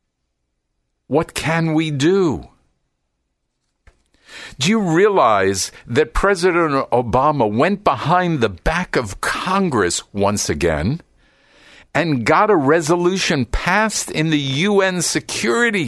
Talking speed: 100 wpm